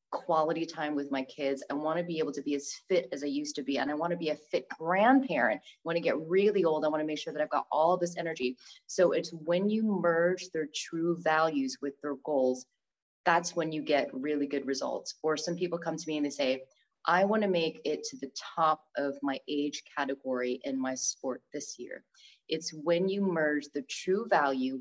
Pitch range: 140-170 Hz